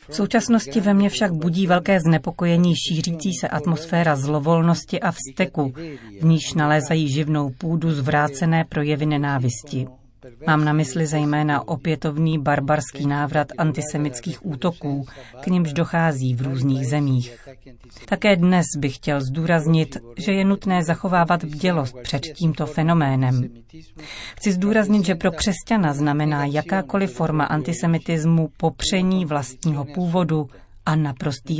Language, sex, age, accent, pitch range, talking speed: Czech, female, 30-49, native, 140-170 Hz, 120 wpm